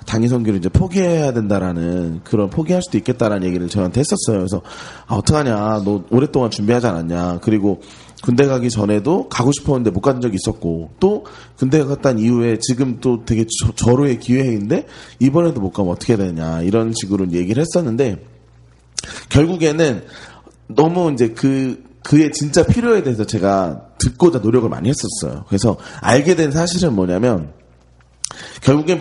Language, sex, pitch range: Korean, male, 100-140 Hz